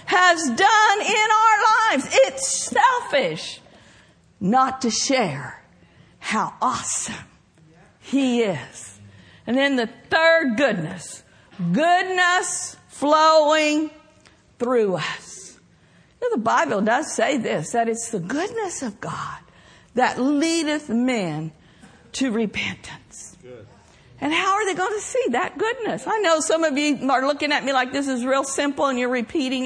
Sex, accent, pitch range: female, American, 240-340 Hz